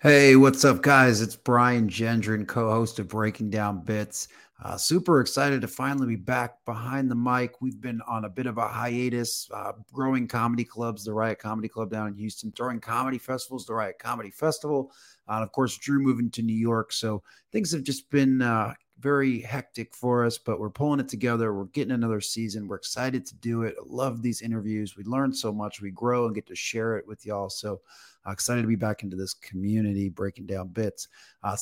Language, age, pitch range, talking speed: English, 30-49, 105-125 Hz, 210 wpm